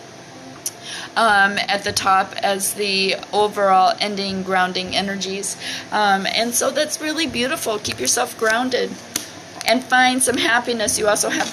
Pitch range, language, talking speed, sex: 195-235 Hz, English, 135 wpm, female